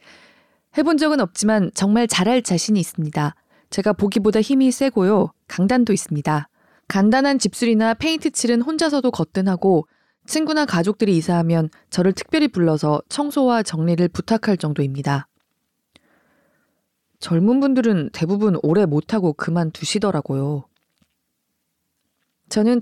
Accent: native